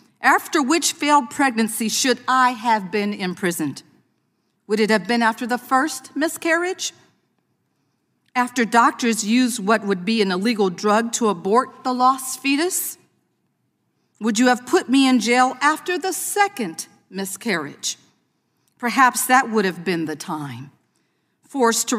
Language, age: English, 50-69